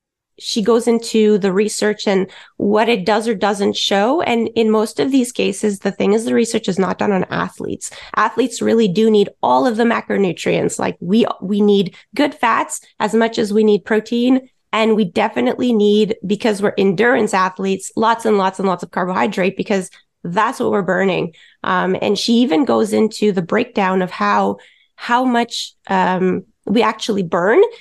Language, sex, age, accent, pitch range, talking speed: English, female, 20-39, American, 200-235 Hz, 180 wpm